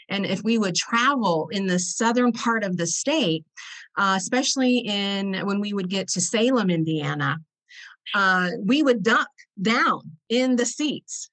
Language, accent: English, American